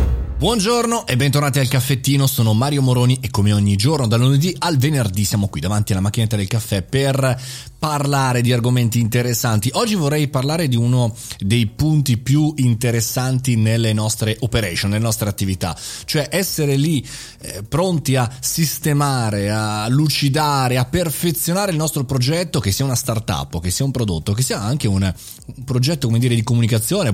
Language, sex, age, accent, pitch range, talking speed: Italian, male, 30-49, native, 105-145 Hz, 165 wpm